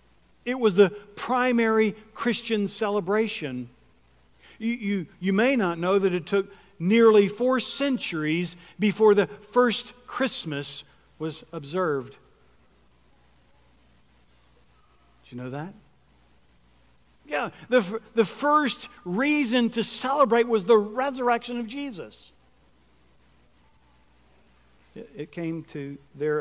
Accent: American